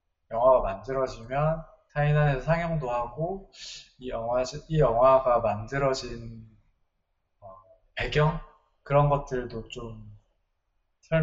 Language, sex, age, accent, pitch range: Chinese, male, 20-39, Korean, 115-150 Hz